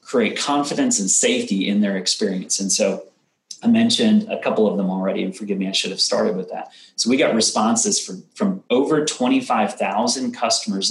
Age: 30-49